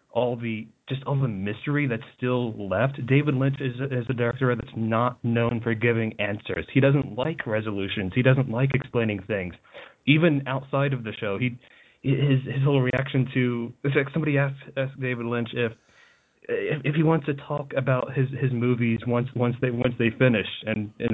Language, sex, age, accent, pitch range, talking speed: English, male, 30-49, American, 115-135 Hz, 190 wpm